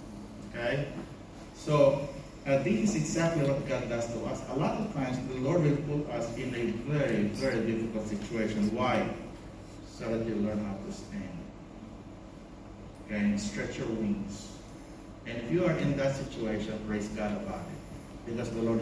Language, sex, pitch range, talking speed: English, male, 105-130 Hz, 170 wpm